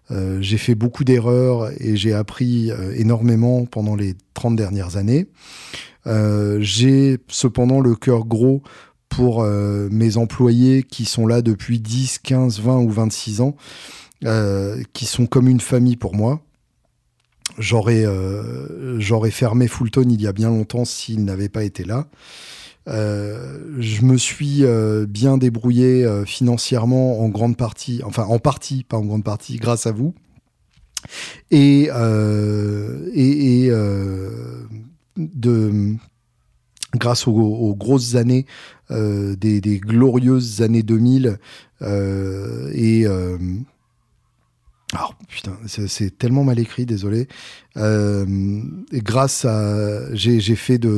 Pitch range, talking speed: 105-125 Hz, 135 wpm